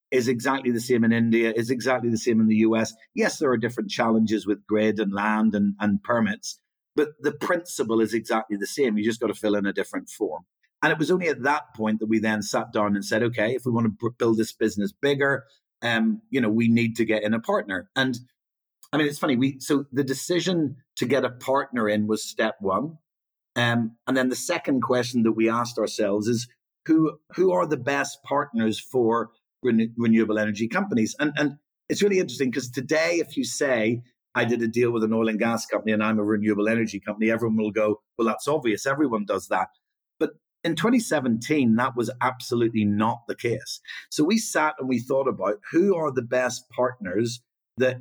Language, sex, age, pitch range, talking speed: English, male, 50-69, 110-135 Hz, 210 wpm